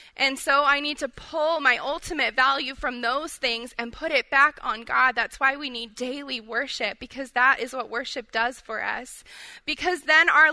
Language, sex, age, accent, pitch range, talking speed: English, female, 20-39, American, 235-285 Hz, 200 wpm